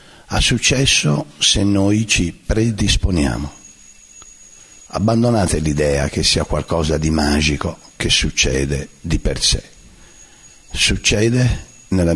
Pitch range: 75-105 Hz